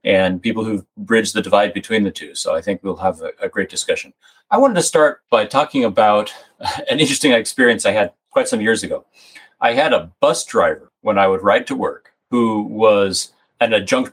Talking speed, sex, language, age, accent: 210 wpm, male, English, 30-49, American